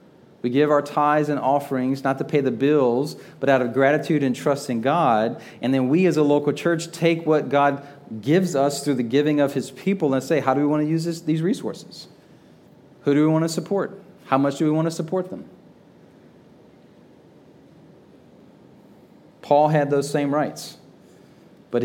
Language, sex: English, male